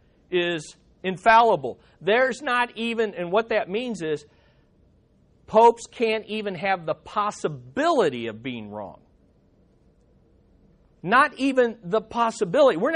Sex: male